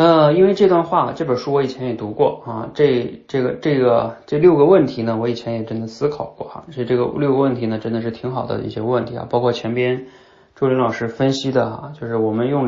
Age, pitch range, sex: 20-39, 110-135 Hz, male